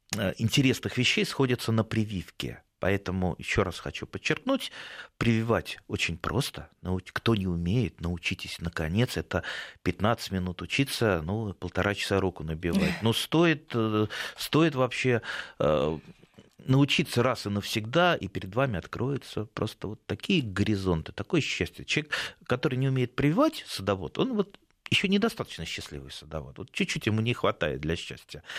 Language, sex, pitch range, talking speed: Russian, male, 95-130 Hz, 135 wpm